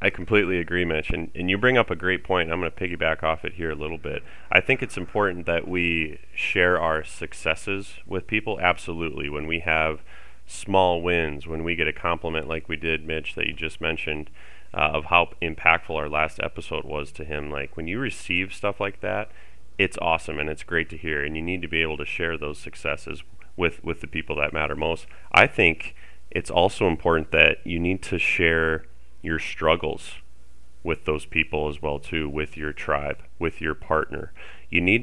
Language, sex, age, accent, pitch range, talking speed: English, male, 30-49, American, 75-95 Hz, 205 wpm